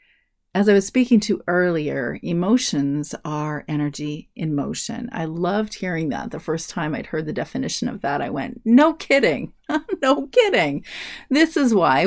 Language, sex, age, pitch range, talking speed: English, female, 30-49, 165-220 Hz, 165 wpm